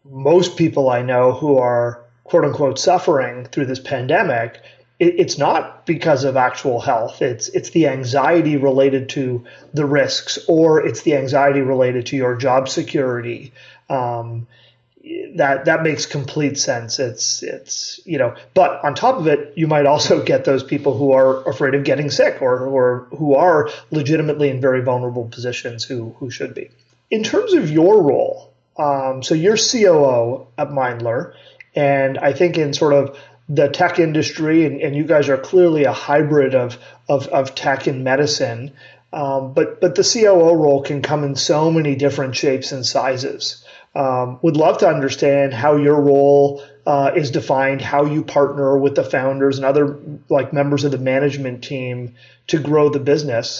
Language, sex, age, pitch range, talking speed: English, male, 30-49, 130-150 Hz, 170 wpm